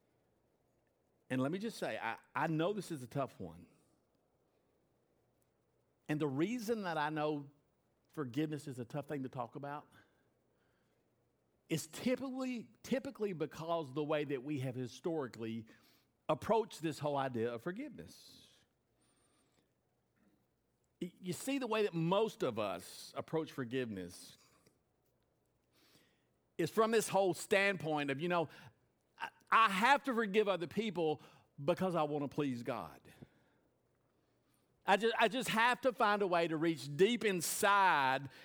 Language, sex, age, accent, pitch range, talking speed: English, male, 50-69, American, 140-200 Hz, 135 wpm